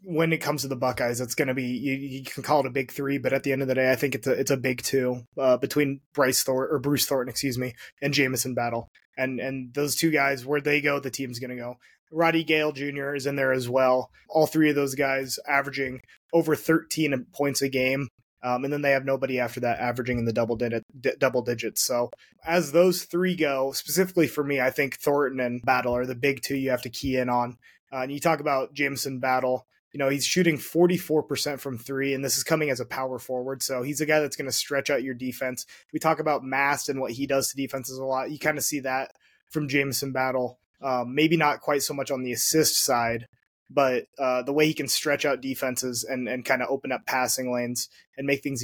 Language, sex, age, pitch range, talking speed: English, male, 20-39, 125-145 Hz, 250 wpm